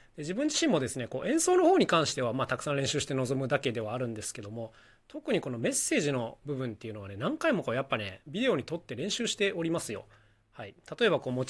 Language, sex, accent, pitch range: Japanese, male, native, 120-190 Hz